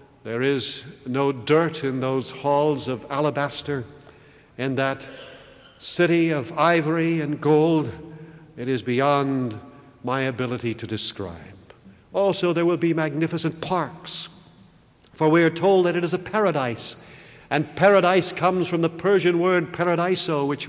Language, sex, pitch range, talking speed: English, male, 125-165 Hz, 135 wpm